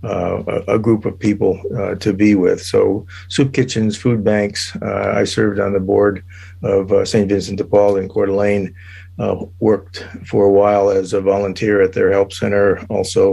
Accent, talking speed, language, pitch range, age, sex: American, 190 wpm, English, 95-110 Hz, 50-69, male